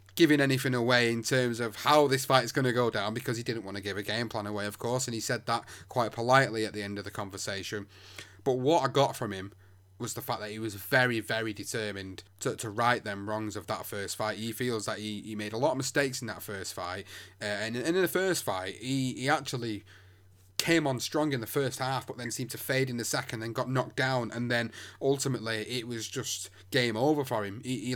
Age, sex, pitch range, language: 30-49, male, 105-130 Hz, English